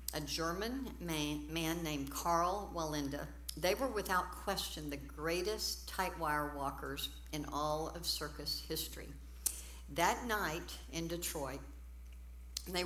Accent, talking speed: American, 115 wpm